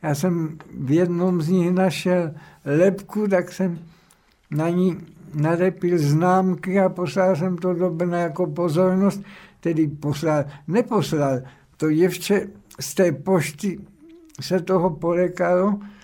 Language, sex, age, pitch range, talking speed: Czech, male, 60-79, 155-180 Hz, 125 wpm